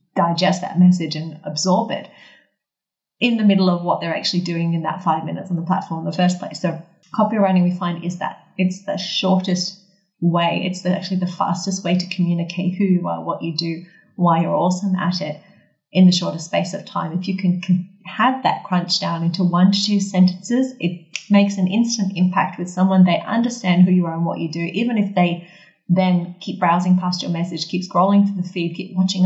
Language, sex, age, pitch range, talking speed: English, female, 30-49, 175-195 Hz, 215 wpm